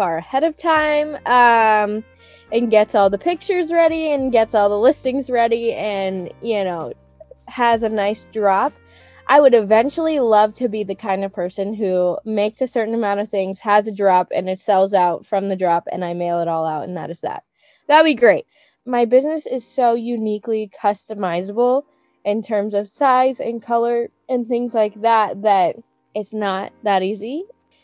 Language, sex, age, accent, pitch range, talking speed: English, female, 10-29, American, 195-260 Hz, 185 wpm